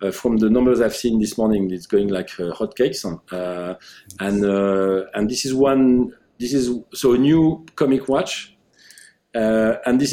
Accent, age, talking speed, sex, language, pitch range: French, 40-59, 180 wpm, male, English, 100-125 Hz